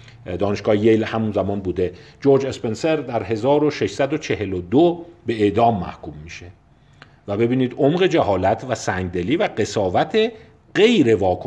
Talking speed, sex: 115 wpm, male